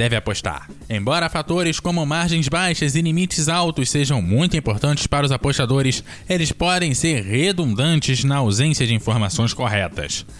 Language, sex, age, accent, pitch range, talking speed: Portuguese, male, 20-39, Brazilian, 105-150 Hz, 145 wpm